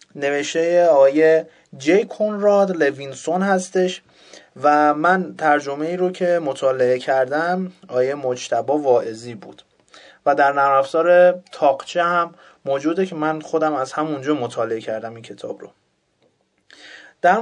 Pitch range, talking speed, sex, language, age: 140-185 Hz, 120 wpm, male, Persian, 30-49